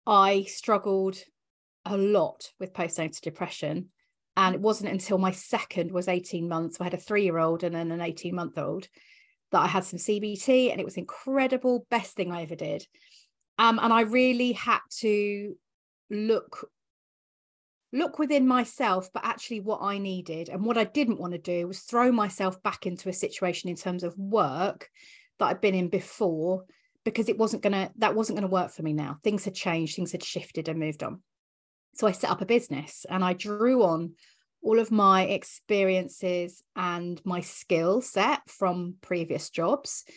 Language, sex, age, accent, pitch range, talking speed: English, female, 30-49, British, 180-220 Hz, 180 wpm